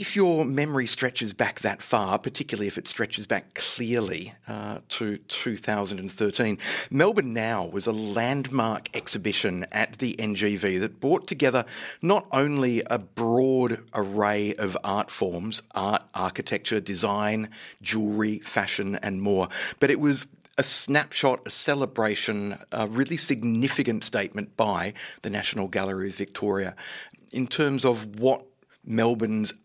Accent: Australian